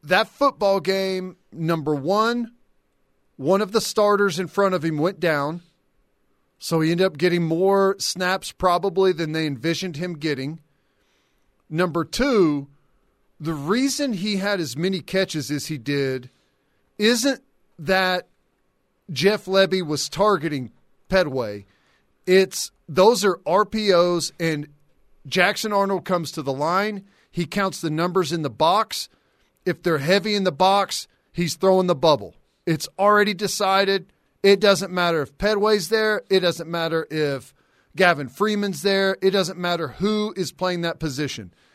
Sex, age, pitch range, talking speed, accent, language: male, 40-59, 155-195 Hz, 140 wpm, American, English